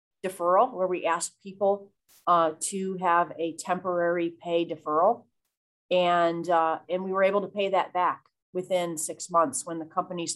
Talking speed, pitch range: 160 wpm, 160-185 Hz